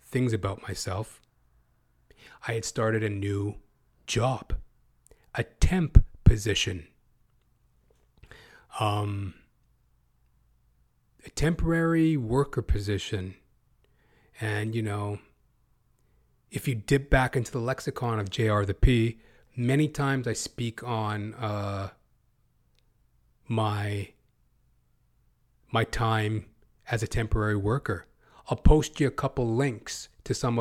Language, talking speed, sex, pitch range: English, 100 wpm, male, 105-120 Hz